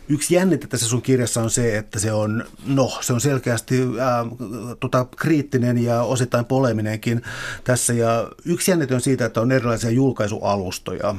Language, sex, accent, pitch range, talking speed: Finnish, male, native, 110-125 Hz, 155 wpm